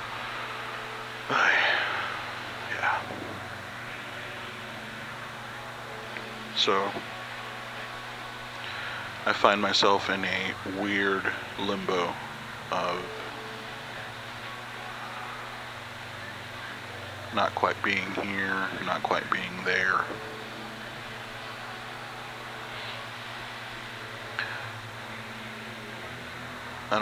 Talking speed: 40 wpm